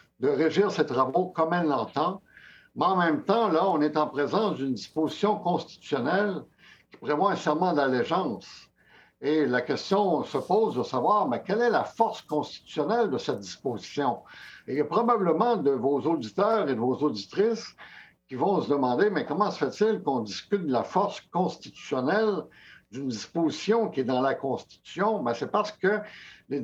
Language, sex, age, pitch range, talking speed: French, male, 60-79, 140-200 Hz, 175 wpm